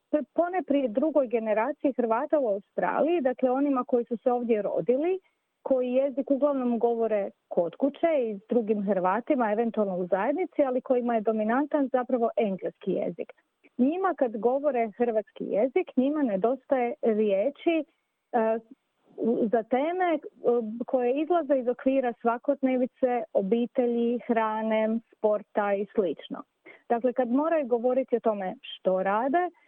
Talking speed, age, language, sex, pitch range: 125 wpm, 30-49, Croatian, female, 215-265 Hz